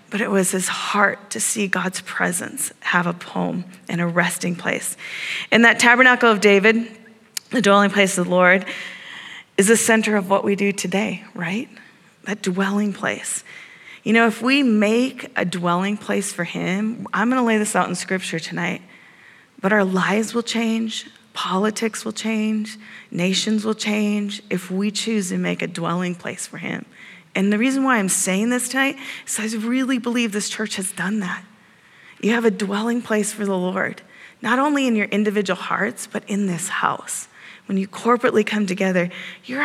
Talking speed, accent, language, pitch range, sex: 180 wpm, American, English, 195-235 Hz, female